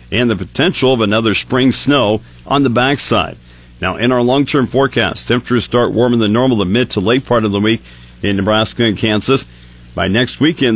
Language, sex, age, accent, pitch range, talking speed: English, male, 50-69, American, 100-120 Hz, 195 wpm